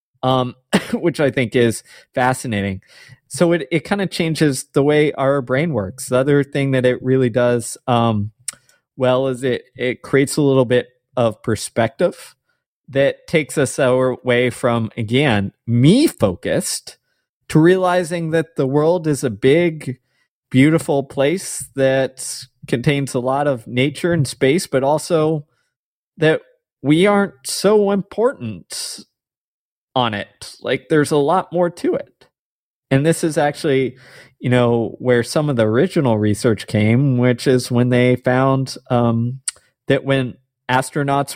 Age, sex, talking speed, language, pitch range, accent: 20-39, male, 140 wpm, English, 125-150 Hz, American